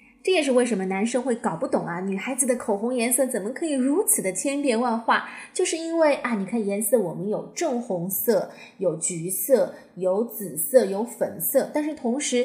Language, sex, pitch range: Chinese, female, 210-280 Hz